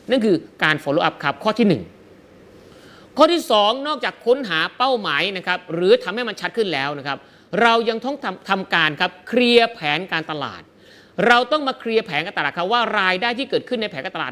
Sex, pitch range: male, 150-225 Hz